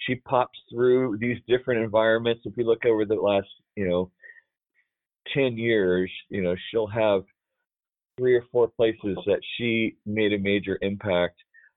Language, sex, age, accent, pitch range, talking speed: English, male, 40-59, American, 95-120 Hz, 155 wpm